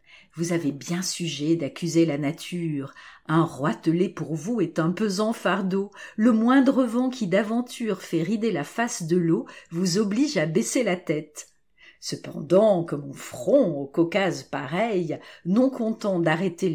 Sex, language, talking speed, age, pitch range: female, French, 150 wpm, 40-59, 165-245 Hz